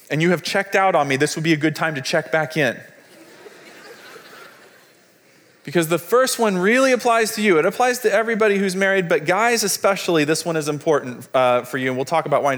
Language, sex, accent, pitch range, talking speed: English, male, American, 145-205 Hz, 225 wpm